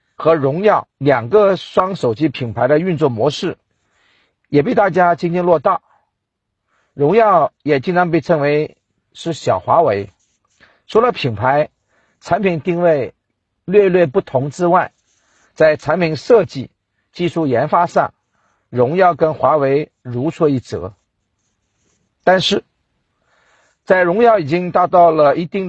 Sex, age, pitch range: male, 50-69, 130-180 Hz